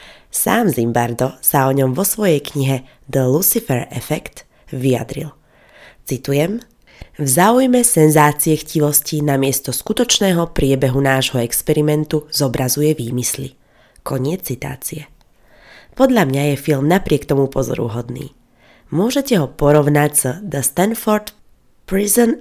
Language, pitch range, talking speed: Slovak, 135-175 Hz, 105 wpm